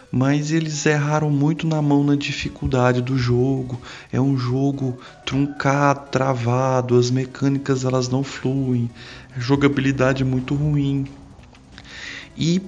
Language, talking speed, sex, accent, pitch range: Portuguese, 120 wpm, male, Brazilian, 115-135 Hz